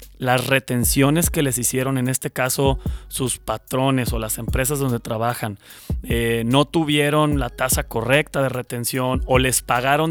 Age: 30-49